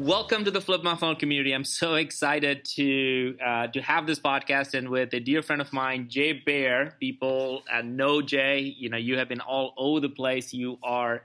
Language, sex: English, male